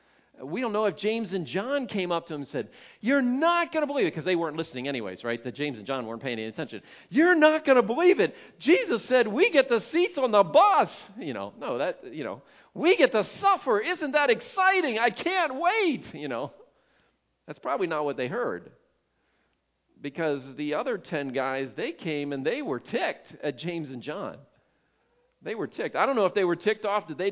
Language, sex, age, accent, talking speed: English, male, 40-59, American, 220 wpm